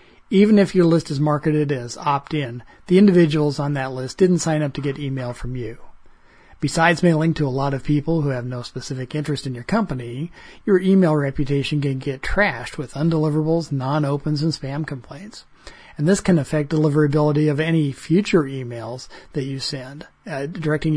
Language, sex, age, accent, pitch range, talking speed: English, male, 40-59, American, 135-160 Hz, 175 wpm